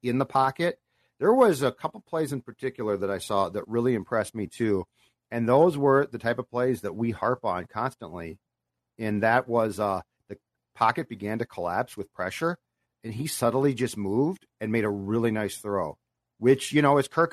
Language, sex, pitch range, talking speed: English, male, 115-145 Hz, 195 wpm